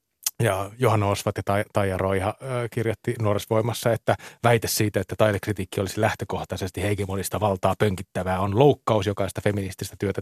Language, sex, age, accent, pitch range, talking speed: Finnish, male, 30-49, native, 100-130 Hz, 155 wpm